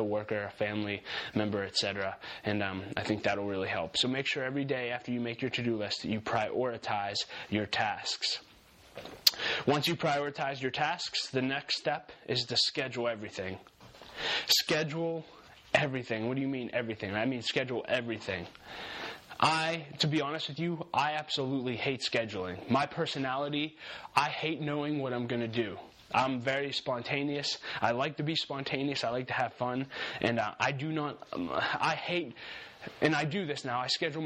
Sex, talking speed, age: male, 175 wpm, 20-39